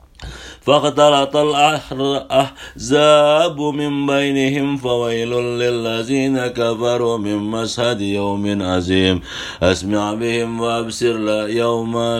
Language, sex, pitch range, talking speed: English, male, 110-150 Hz, 75 wpm